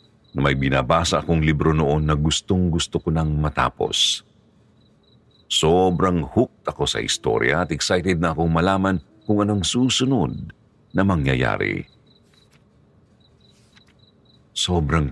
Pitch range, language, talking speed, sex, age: 75-105 Hz, Filipino, 105 wpm, male, 50-69